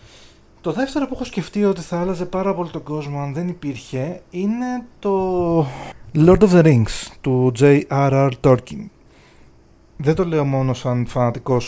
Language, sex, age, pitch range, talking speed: Greek, male, 30-49, 120-150 Hz, 155 wpm